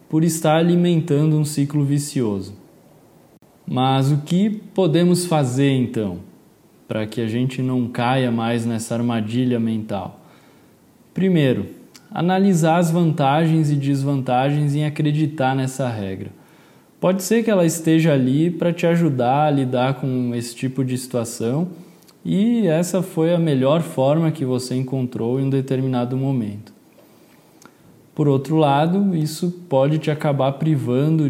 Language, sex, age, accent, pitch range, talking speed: Portuguese, male, 20-39, Brazilian, 125-160 Hz, 130 wpm